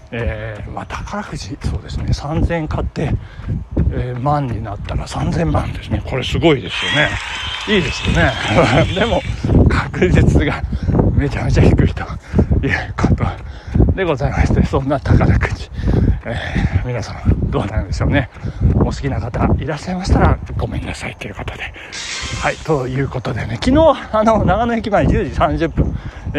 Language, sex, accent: Japanese, male, native